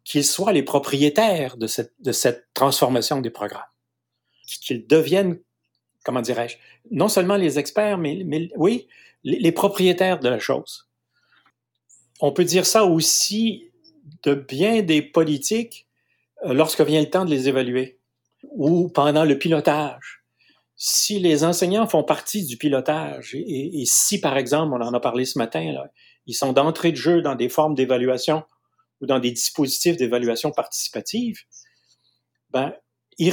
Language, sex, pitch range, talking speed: French, male, 125-165 Hz, 150 wpm